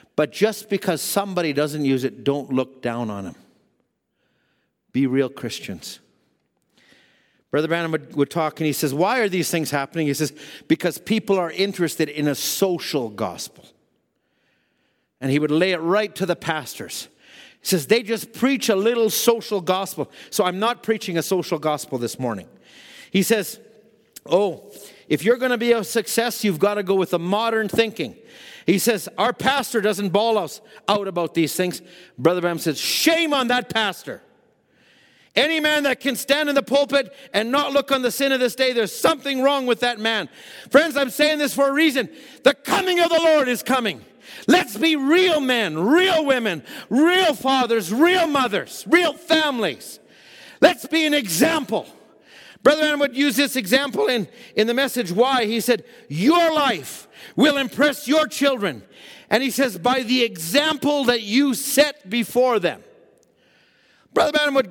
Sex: male